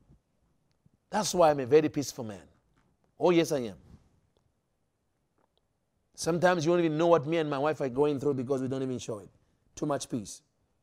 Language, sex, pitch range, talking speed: English, male, 160-225 Hz, 185 wpm